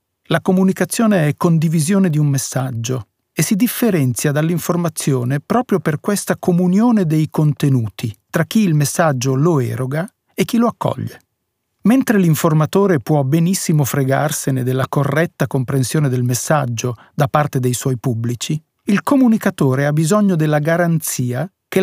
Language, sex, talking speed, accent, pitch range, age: Italian, male, 135 wpm, native, 135-190 Hz, 40-59